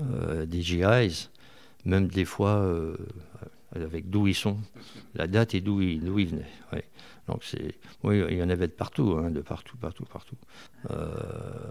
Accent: French